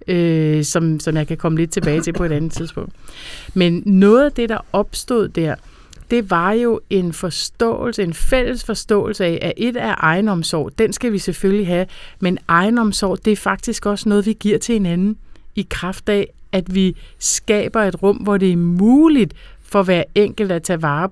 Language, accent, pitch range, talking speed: Danish, native, 175-205 Hz, 190 wpm